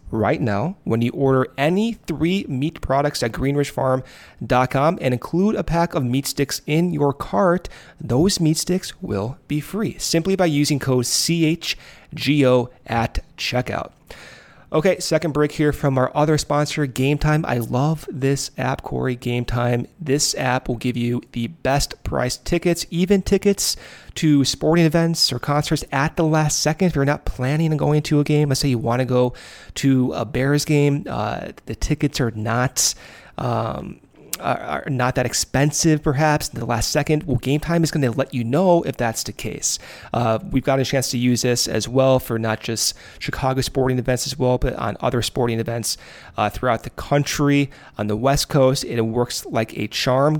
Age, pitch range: 30-49, 125-155 Hz